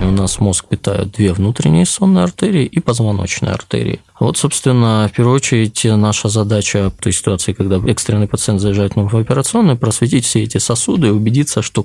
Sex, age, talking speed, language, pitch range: male, 20-39, 170 wpm, Russian, 100-120 Hz